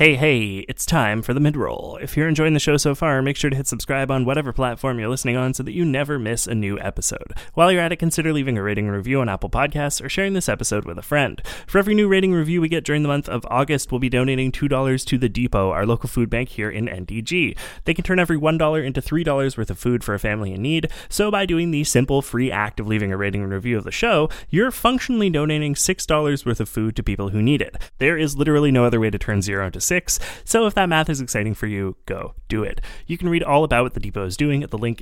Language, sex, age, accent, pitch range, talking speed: English, male, 20-39, American, 110-150 Hz, 265 wpm